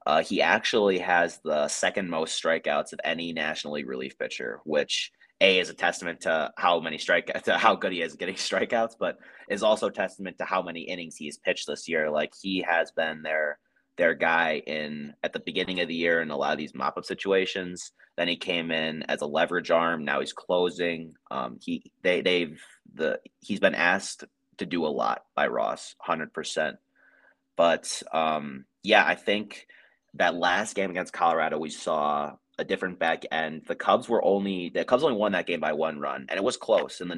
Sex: male